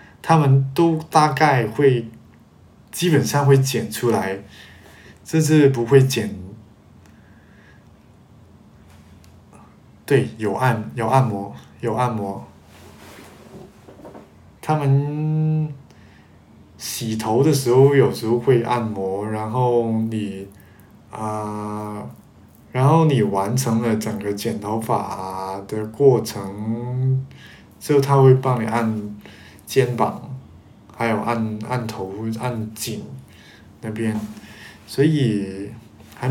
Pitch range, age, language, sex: 105-130 Hz, 20-39, Chinese, male